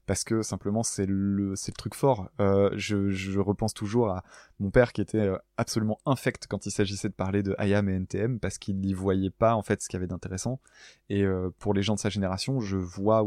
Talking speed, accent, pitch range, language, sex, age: 235 wpm, French, 95-115 Hz, French, male, 20-39